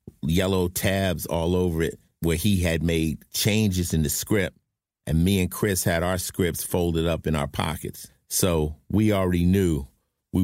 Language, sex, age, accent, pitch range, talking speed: English, male, 50-69, American, 80-110 Hz, 170 wpm